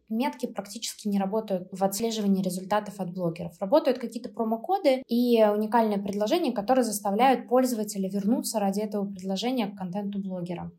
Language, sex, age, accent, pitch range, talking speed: Russian, female, 20-39, native, 205-250 Hz, 140 wpm